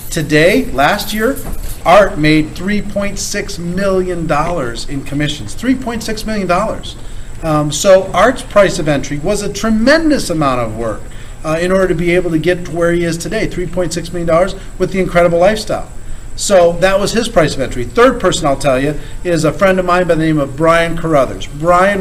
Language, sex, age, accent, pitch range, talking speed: English, male, 40-59, American, 155-195 Hz, 180 wpm